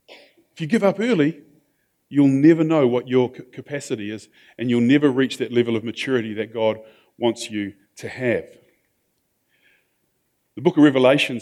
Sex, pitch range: male, 120-145 Hz